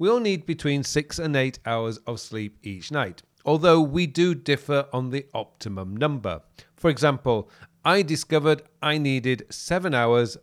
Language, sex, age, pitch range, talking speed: English, male, 40-59, 115-155 Hz, 160 wpm